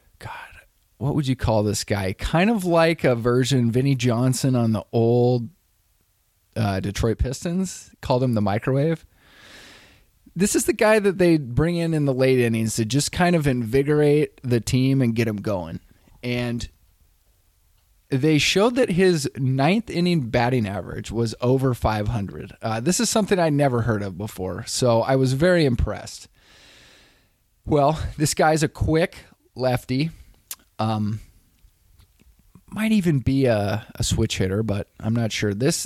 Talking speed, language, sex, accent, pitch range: 150 wpm, English, male, American, 100-140 Hz